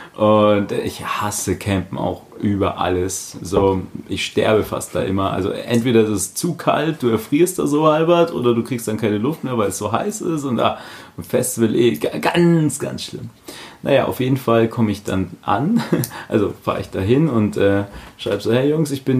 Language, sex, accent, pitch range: German, male, German, 100-130 Hz